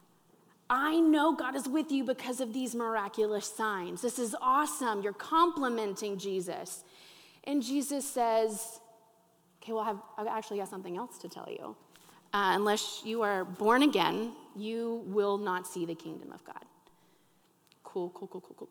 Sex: female